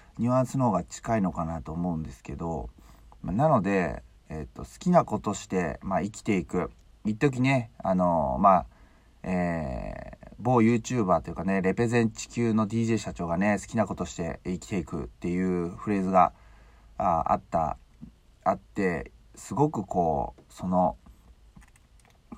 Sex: male